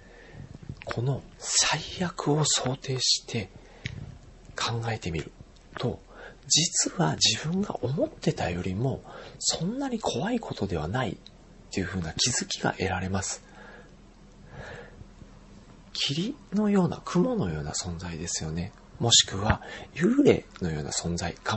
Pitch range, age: 95-140 Hz, 40-59